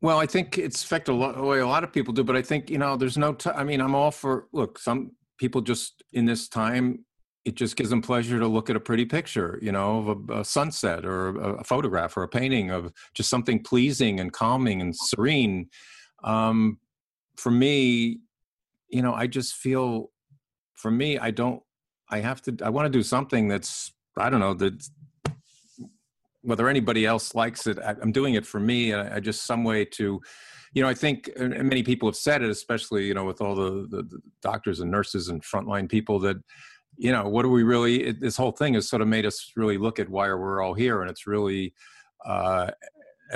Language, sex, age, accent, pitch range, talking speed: English, male, 50-69, American, 100-130 Hz, 215 wpm